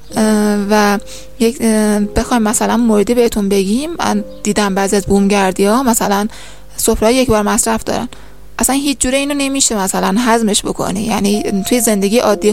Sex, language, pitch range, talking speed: female, Persian, 200-235 Hz, 135 wpm